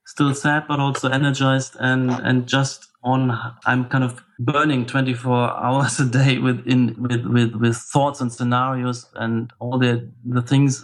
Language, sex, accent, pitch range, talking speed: English, male, German, 120-135 Hz, 160 wpm